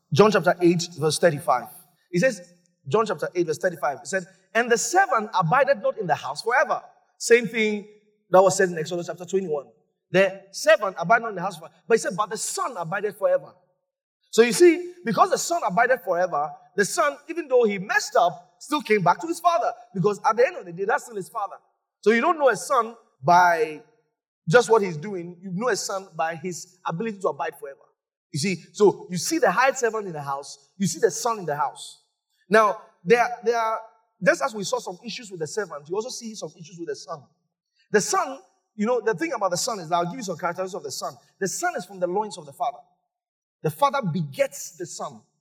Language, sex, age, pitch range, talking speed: English, male, 30-49, 180-245 Hz, 230 wpm